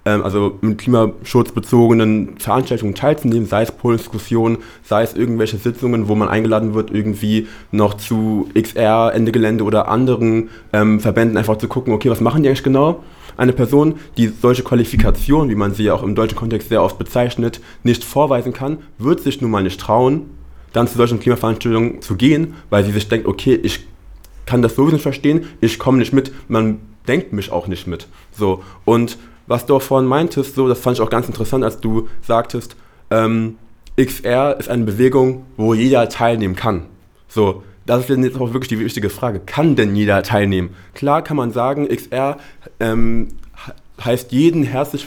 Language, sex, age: German, male, 20-39